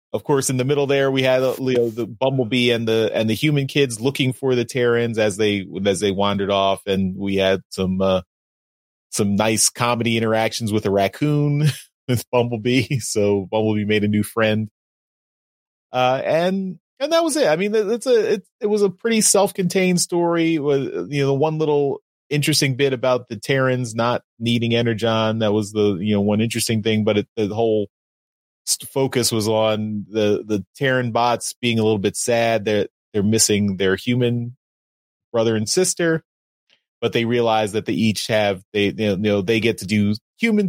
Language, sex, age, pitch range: English, male, 30-49, 105-140 Hz